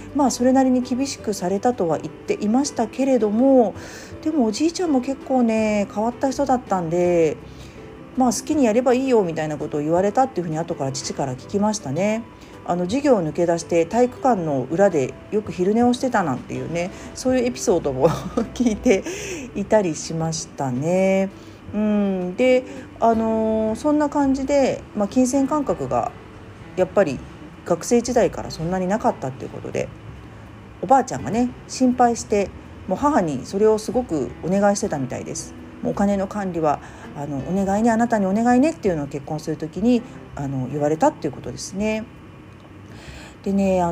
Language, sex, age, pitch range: Japanese, female, 40-59, 165-255 Hz